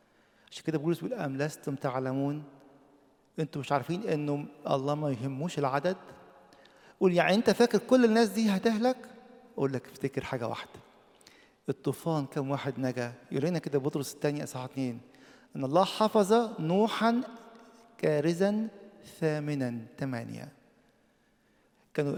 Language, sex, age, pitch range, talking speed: English, male, 50-69, 140-190 Hz, 120 wpm